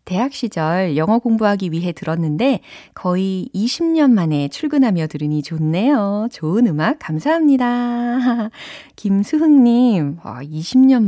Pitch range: 160-255 Hz